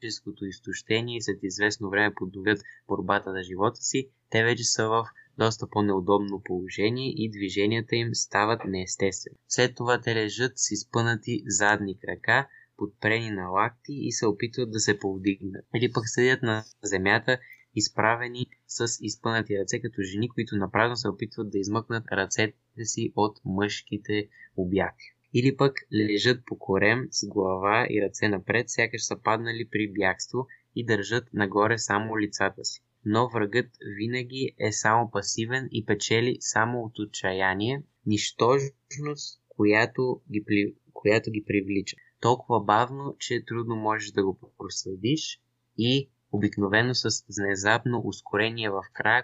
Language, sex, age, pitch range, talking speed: Bulgarian, male, 20-39, 100-120 Hz, 140 wpm